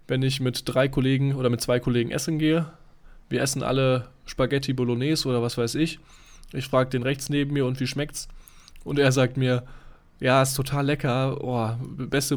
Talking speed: 190 wpm